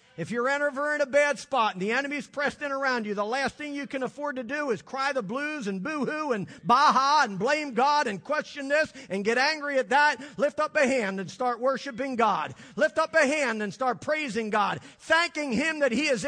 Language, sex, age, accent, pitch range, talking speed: English, male, 40-59, American, 200-280 Hz, 225 wpm